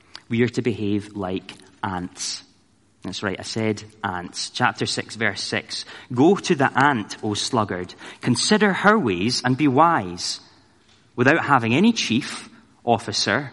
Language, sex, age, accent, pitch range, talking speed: English, male, 30-49, British, 100-125 Hz, 140 wpm